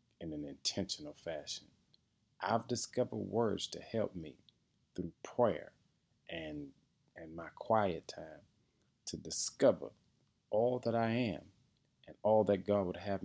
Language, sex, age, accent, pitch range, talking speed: English, male, 40-59, American, 85-105 Hz, 130 wpm